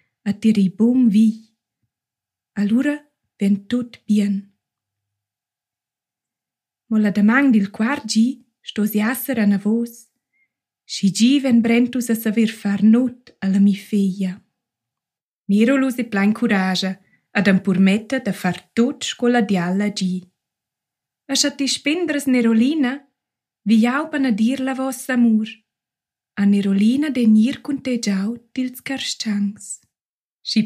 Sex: female